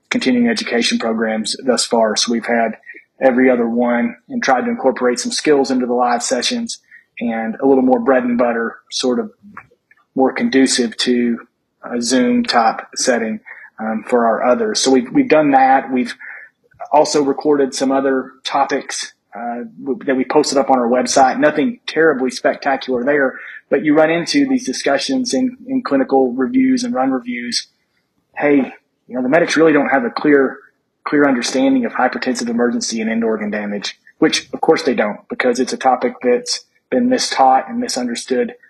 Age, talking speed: 30-49, 170 wpm